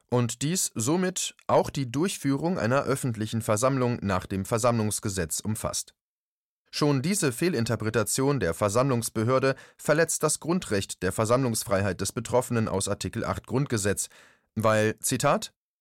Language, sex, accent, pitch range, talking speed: German, male, German, 105-145 Hz, 120 wpm